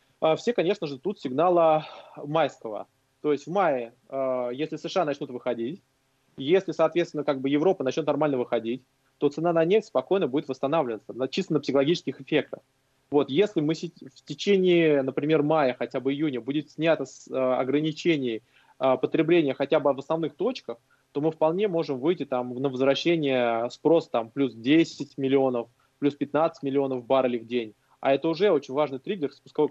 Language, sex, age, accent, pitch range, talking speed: Russian, male, 20-39, native, 135-170 Hz, 145 wpm